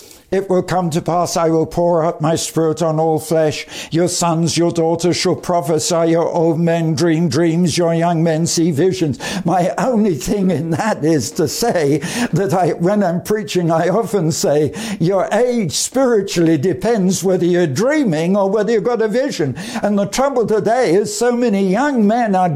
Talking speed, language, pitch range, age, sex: 185 wpm, English, 175-230 Hz, 60-79, male